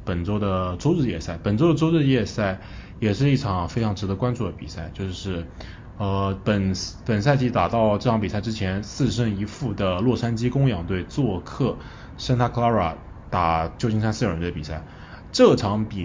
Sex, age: male, 20-39